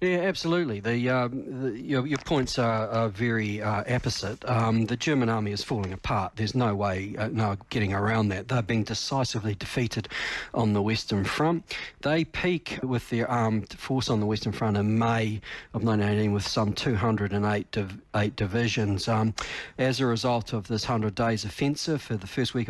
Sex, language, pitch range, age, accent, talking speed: male, English, 105-125 Hz, 40-59, Australian, 185 wpm